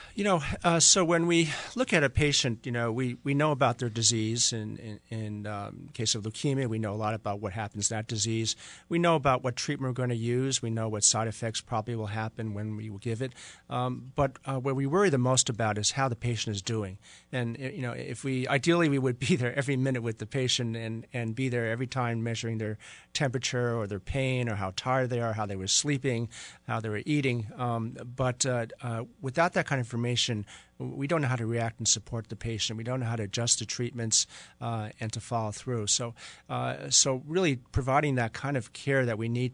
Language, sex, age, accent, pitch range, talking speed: English, male, 50-69, American, 115-135 Hz, 235 wpm